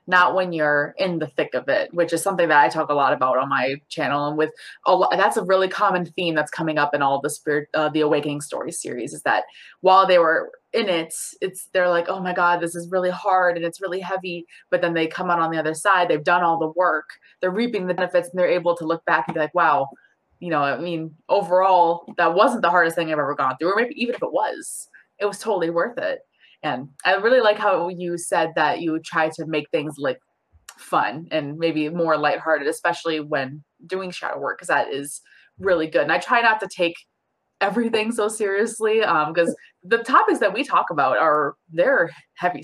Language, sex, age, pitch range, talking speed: English, female, 20-39, 155-190 Hz, 230 wpm